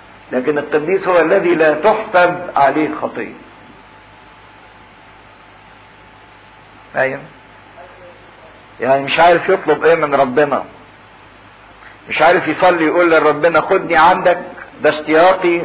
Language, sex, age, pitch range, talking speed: English, male, 50-69, 150-180 Hz, 90 wpm